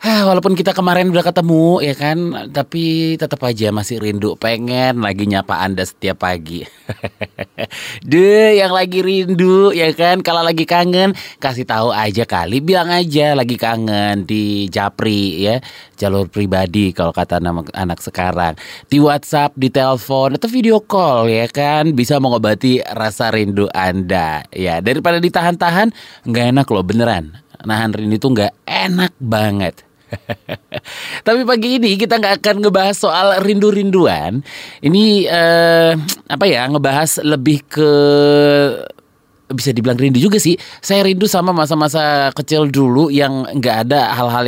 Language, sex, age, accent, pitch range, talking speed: Indonesian, male, 20-39, native, 110-170 Hz, 140 wpm